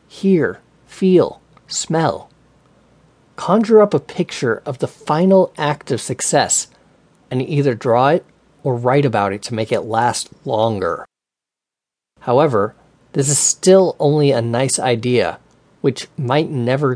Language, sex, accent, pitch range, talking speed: English, male, American, 120-160 Hz, 130 wpm